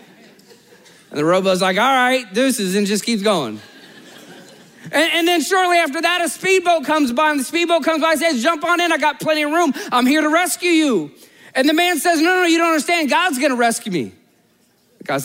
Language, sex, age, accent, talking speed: English, male, 30-49, American, 220 wpm